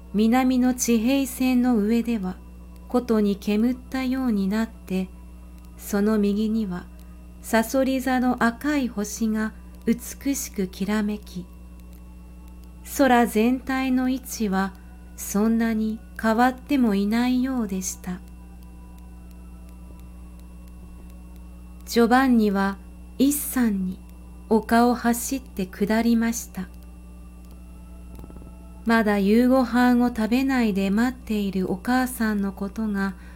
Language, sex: Japanese, female